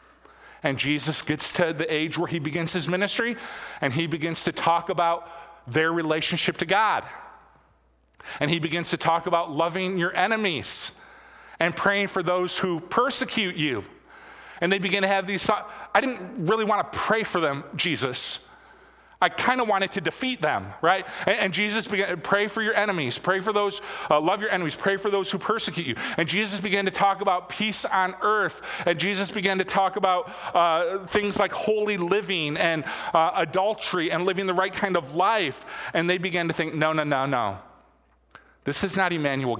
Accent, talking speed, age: American, 190 wpm, 40-59